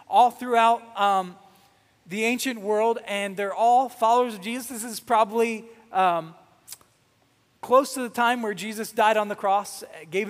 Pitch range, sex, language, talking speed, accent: 170-225 Hz, male, English, 155 wpm, American